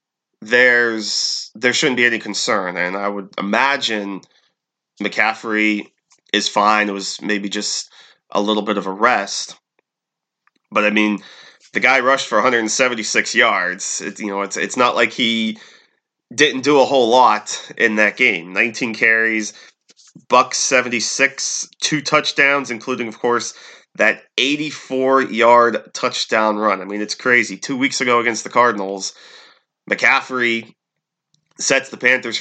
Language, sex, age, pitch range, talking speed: English, male, 30-49, 105-130 Hz, 140 wpm